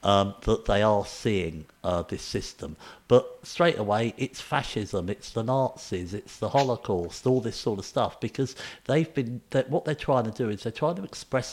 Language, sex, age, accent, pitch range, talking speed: English, male, 50-69, British, 95-120 Hz, 200 wpm